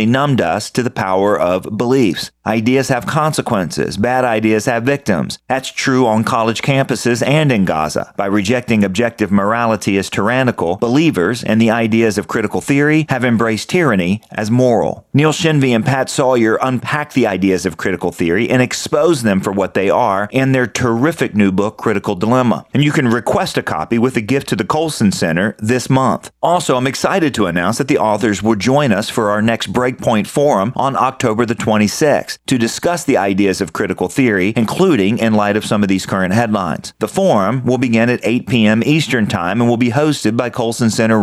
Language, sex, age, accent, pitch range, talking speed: English, male, 40-59, American, 105-130 Hz, 195 wpm